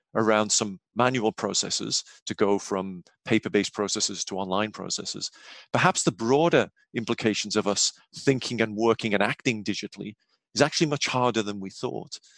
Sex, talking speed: male, 150 wpm